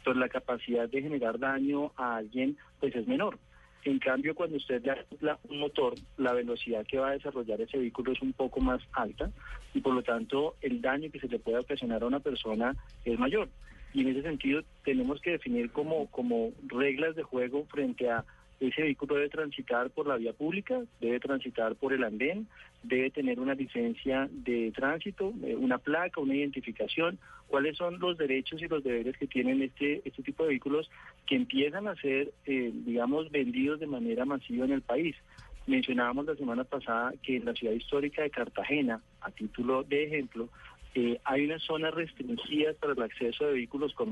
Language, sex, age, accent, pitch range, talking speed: Spanish, male, 40-59, Colombian, 125-155 Hz, 185 wpm